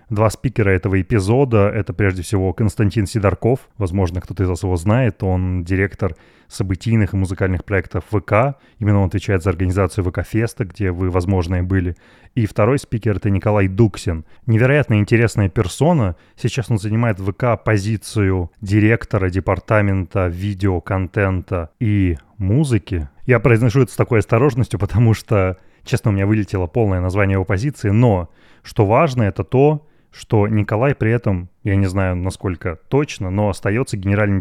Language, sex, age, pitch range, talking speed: Russian, male, 20-39, 95-115 Hz, 150 wpm